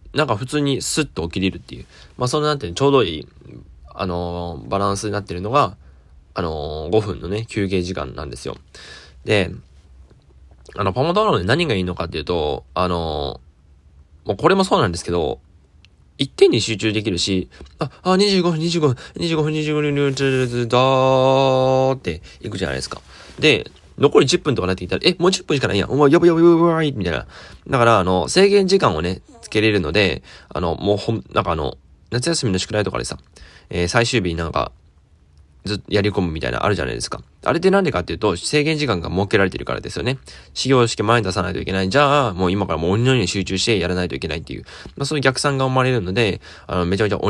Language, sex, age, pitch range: Japanese, male, 20-39, 80-130 Hz